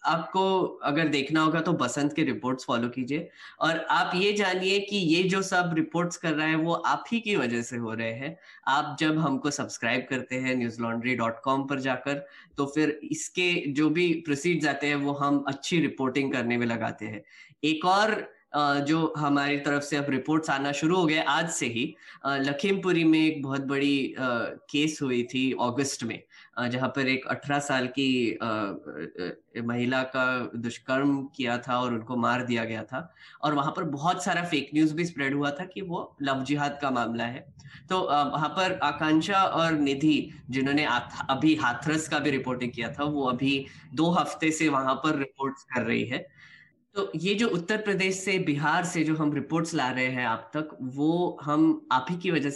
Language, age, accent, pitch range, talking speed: Hindi, 10-29, native, 130-160 Hz, 185 wpm